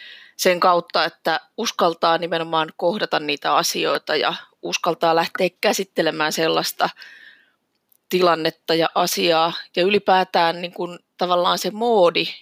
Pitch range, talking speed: 165-195 Hz, 110 wpm